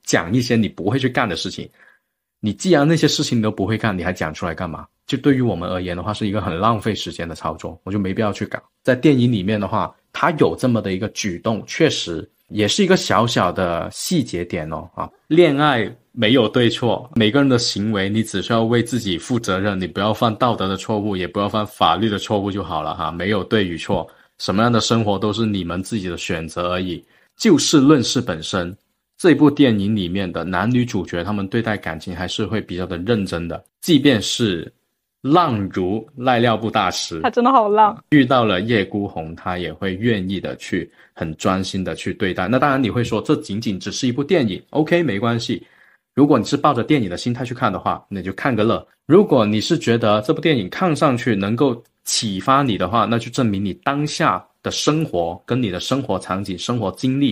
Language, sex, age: Chinese, male, 20-39